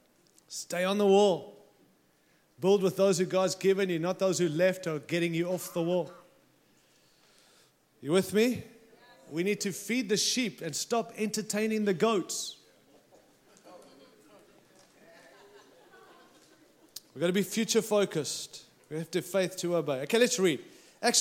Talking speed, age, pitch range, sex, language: 145 wpm, 30-49, 175-225 Hz, male, English